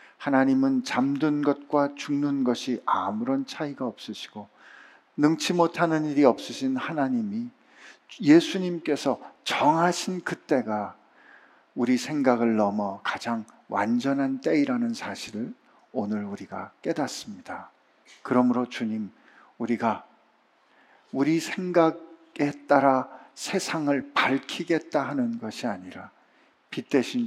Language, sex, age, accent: Korean, male, 50-69, native